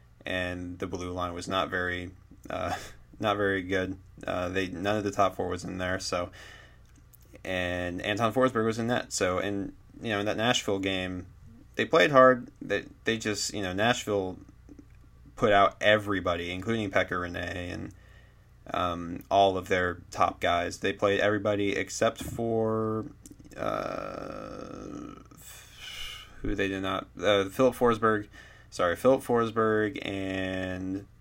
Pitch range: 95-110 Hz